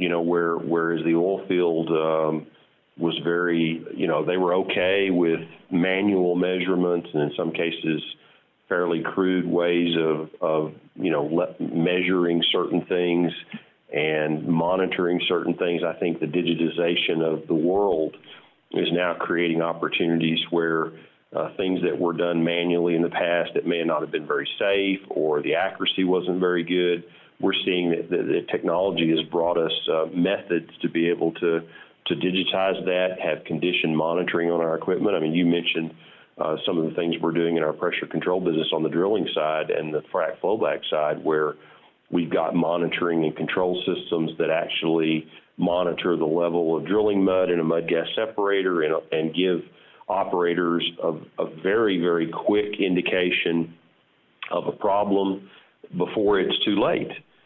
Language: English